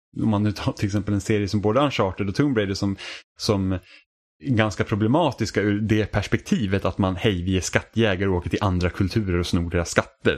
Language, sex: Swedish, male